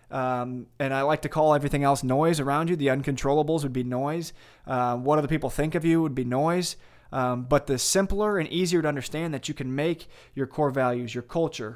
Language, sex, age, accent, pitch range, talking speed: English, male, 20-39, American, 130-155 Hz, 220 wpm